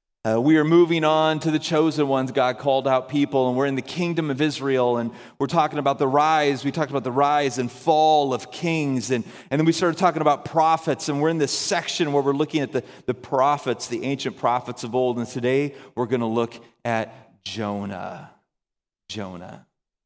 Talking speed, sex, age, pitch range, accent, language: 205 wpm, male, 30-49, 115-150 Hz, American, English